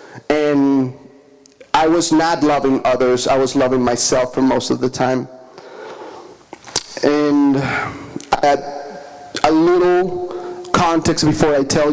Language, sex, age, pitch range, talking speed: English, male, 30-49, 140-165 Hz, 110 wpm